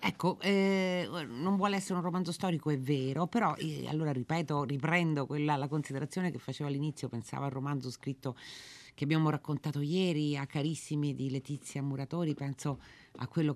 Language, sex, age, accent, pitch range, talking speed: Italian, female, 30-49, native, 130-155 Hz, 165 wpm